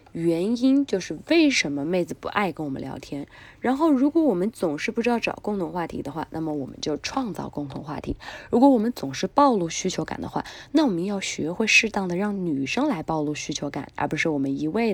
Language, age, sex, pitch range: Chinese, 20-39, female, 145-210 Hz